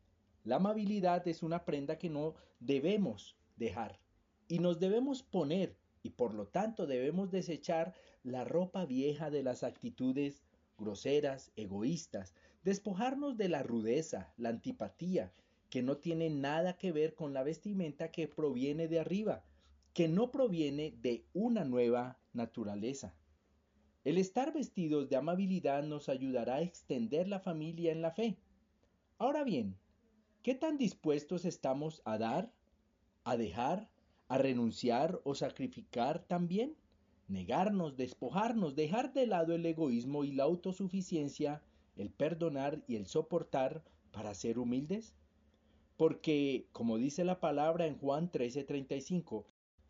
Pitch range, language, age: 125-190 Hz, Spanish, 40-59